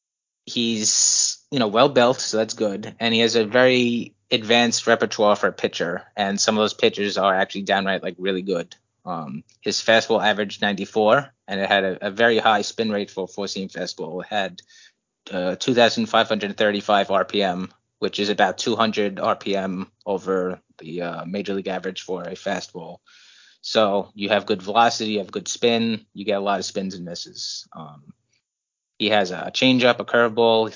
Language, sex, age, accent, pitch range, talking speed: English, male, 20-39, American, 100-115 Hz, 175 wpm